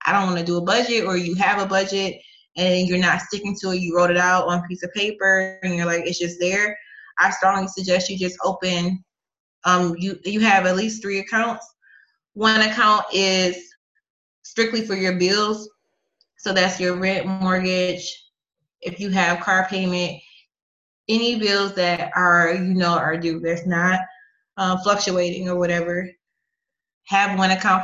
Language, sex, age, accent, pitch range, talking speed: English, female, 20-39, American, 175-195 Hz, 175 wpm